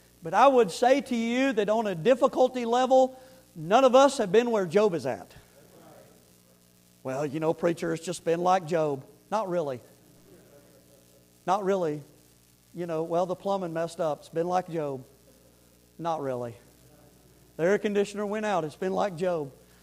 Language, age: English, 50-69